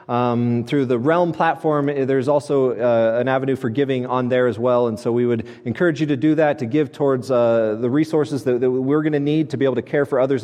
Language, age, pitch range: English, 30-49, 125-155 Hz